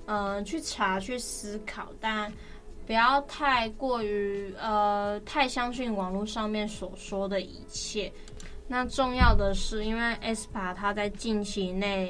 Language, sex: Chinese, female